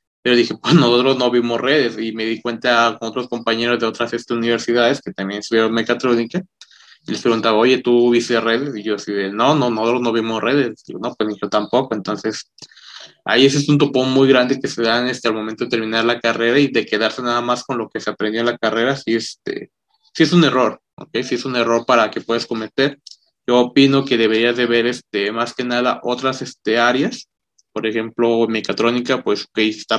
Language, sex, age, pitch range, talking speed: Spanish, male, 20-39, 110-125 Hz, 240 wpm